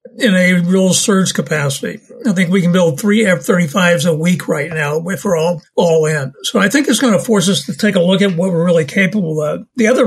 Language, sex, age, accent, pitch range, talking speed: English, male, 60-79, American, 170-205 Hz, 255 wpm